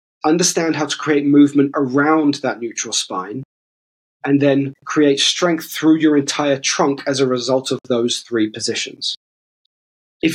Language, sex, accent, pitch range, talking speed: English, male, British, 125-155 Hz, 145 wpm